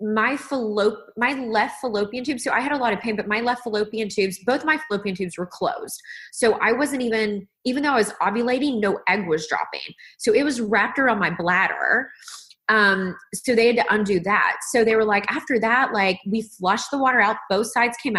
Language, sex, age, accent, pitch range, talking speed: English, female, 20-39, American, 195-250 Hz, 220 wpm